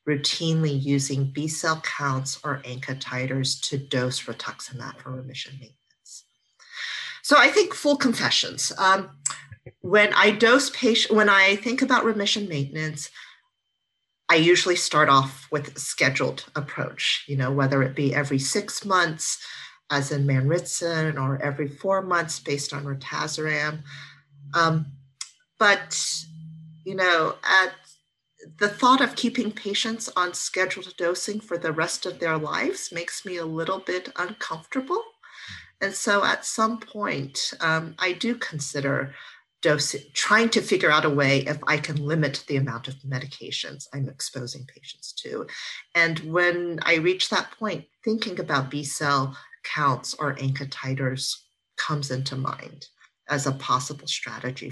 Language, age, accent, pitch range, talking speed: English, 40-59, American, 140-190 Hz, 140 wpm